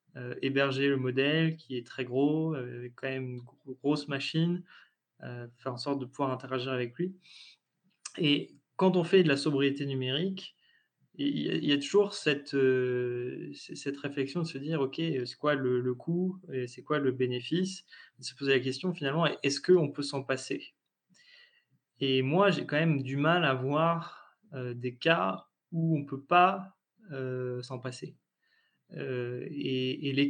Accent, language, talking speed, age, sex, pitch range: French, French, 180 wpm, 20-39, male, 130-165 Hz